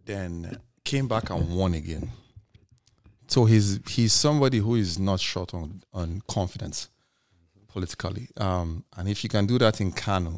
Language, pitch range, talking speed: English, 85-105 Hz, 155 wpm